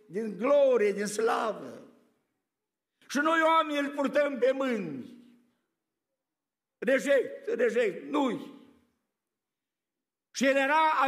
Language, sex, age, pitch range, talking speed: Romanian, male, 60-79, 170-280 Hz, 95 wpm